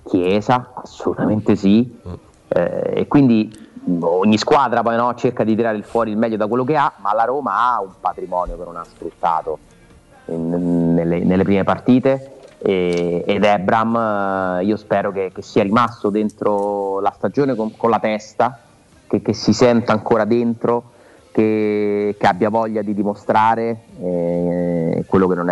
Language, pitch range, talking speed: Italian, 100-115 Hz, 160 wpm